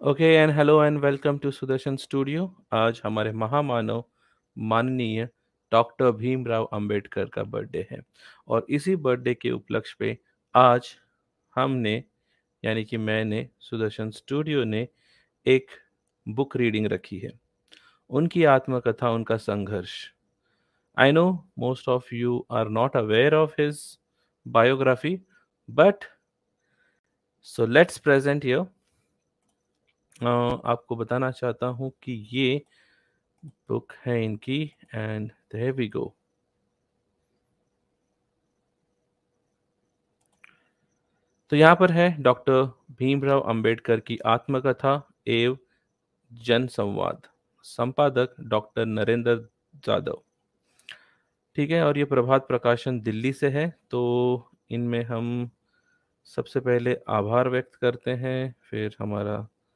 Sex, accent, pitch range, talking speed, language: male, native, 115-140 Hz, 105 wpm, Hindi